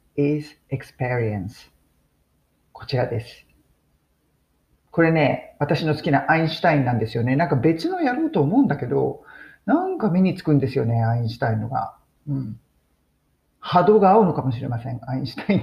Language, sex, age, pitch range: Japanese, male, 40-59, 115-185 Hz